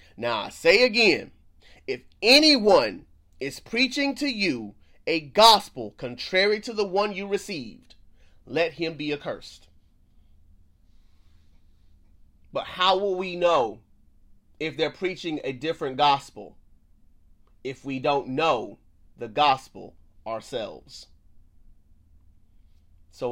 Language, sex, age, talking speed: English, male, 30-49, 105 wpm